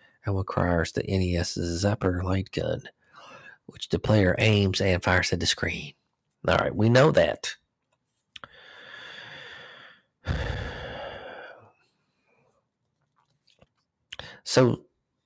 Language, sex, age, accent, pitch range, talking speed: English, male, 40-59, American, 90-105 Hz, 85 wpm